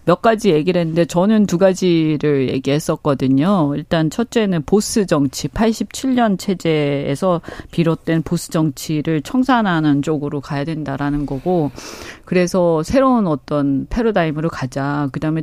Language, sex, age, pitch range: Korean, female, 40-59, 155-220 Hz